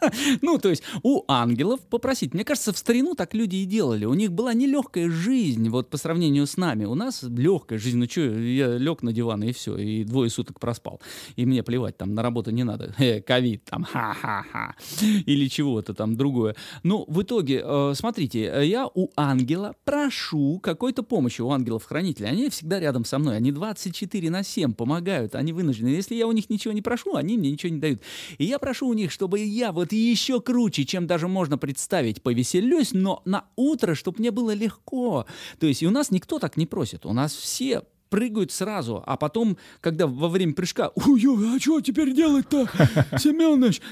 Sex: male